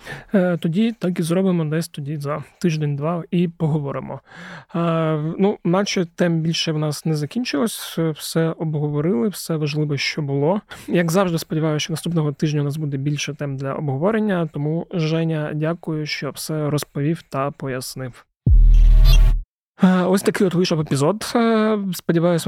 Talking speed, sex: 135 wpm, male